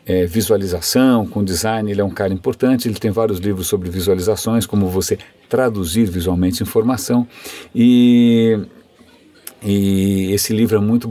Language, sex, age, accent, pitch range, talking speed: Portuguese, male, 50-69, Brazilian, 100-130 Hz, 135 wpm